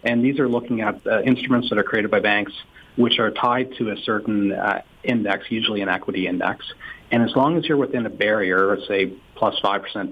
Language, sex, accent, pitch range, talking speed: English, male, American, 100-125 Hz, 210 wpm